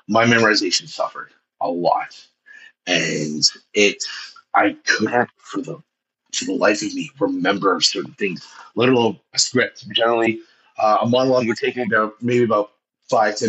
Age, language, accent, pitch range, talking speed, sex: 30-49, English, American, 110-145 Hz, 140 wpm, male